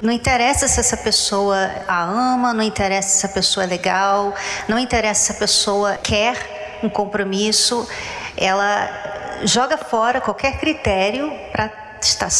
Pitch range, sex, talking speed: 195-250 Hz, female, 140 wpm